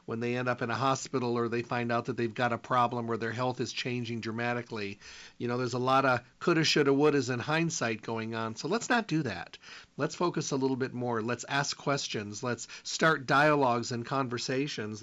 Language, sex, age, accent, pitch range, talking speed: English, male, 40-59, American, 120-145 Hz, 215 wpm